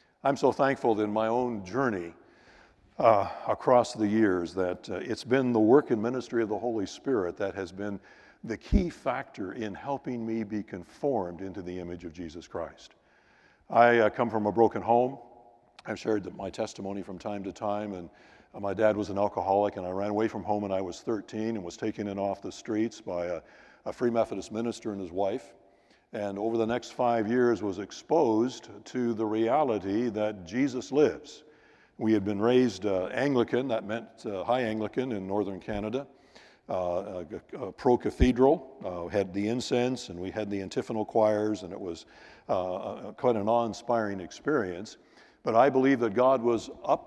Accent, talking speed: American, 185 wpm